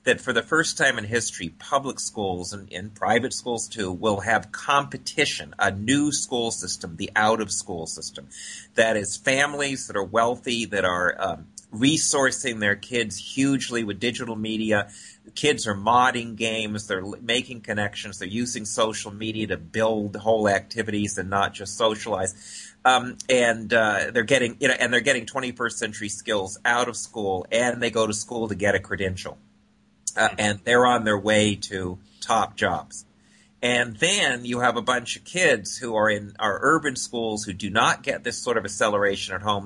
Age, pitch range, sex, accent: 30-49, 105-120 Hz, male, American